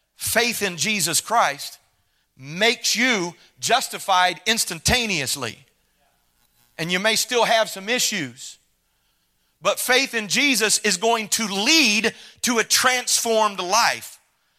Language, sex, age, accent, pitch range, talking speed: English, male, 40-59, American, 195-265 Hz, 110 wpm